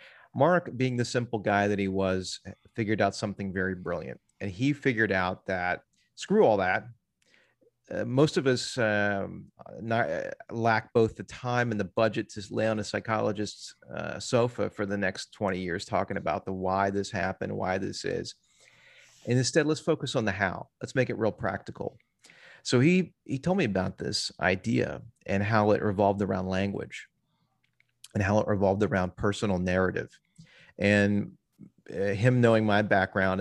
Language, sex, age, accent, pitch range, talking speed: English, male, 30-49, American, 95-110 Hz, 170 wpm